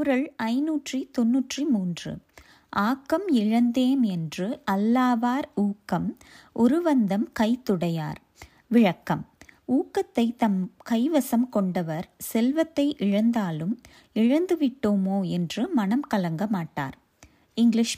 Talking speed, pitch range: 80 wpm, 205-275 Hz